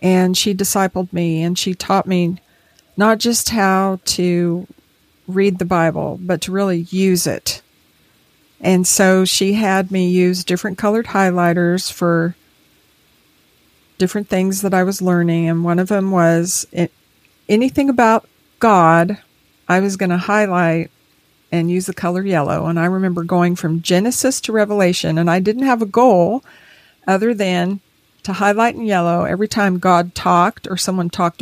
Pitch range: 175-205 Hz